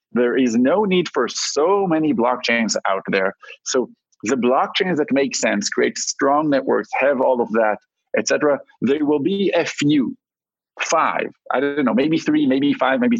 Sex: male